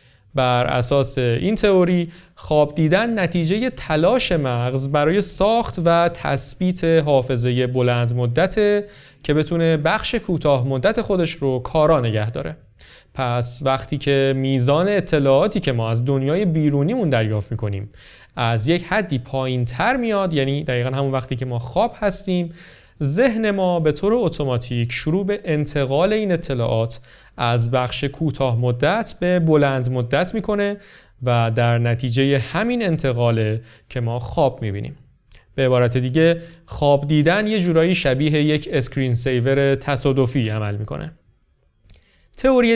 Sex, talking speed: male, 135 wpm